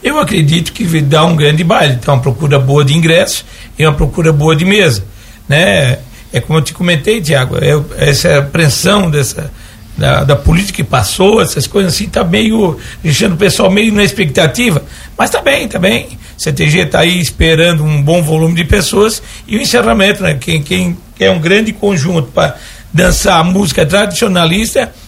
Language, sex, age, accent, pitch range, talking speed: Portuguese, male, 60-79, Brazilian, 145-195 Hz, 185 wpm